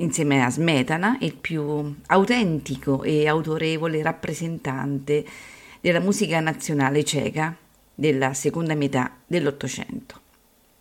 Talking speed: 95 wpm